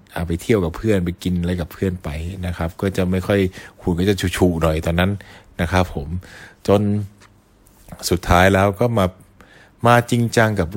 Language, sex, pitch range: Thai, male, 85-110 Hz